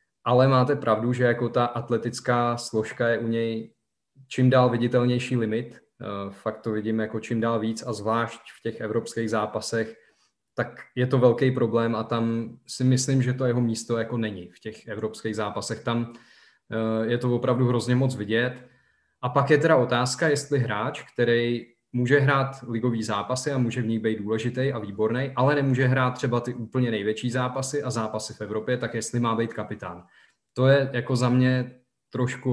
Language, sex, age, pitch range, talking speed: Czech, male, 20-39, 110-125 Hz, 180 wpm